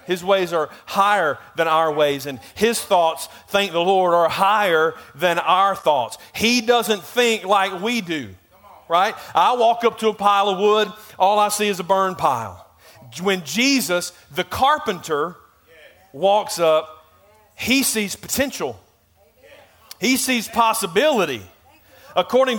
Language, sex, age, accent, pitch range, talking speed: English, male, 40-59, American, 160-220 Hz, 140 wpm